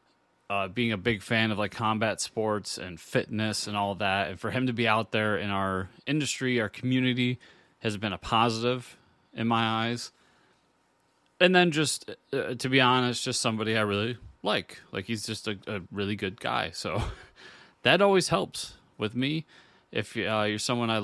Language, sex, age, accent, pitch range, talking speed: English, male, 30-49, American, 105-130 Hz, 185 wpm